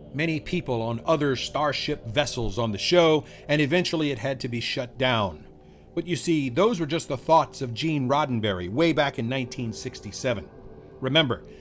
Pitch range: 105-150 Hz